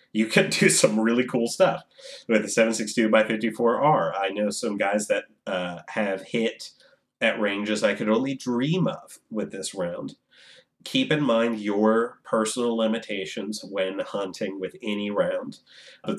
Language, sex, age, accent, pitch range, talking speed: English, male, 30-49, American, 90-115 Hz, 160 wpm